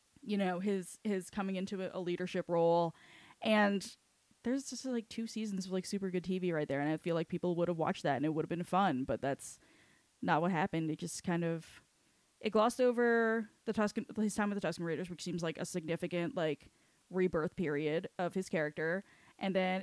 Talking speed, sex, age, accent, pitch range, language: 215 wpm, female, 10-29, American, 170-220 Hz, English